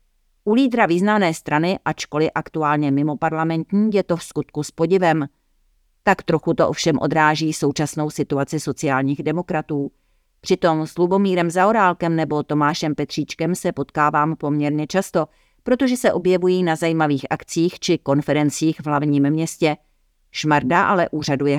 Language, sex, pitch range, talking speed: Czech, female, 145-170 Hz, 135 wpm